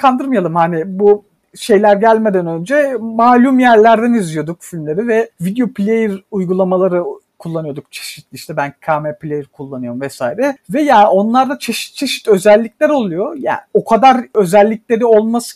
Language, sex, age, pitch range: Turkish, male, 50-69, 195-260 Hz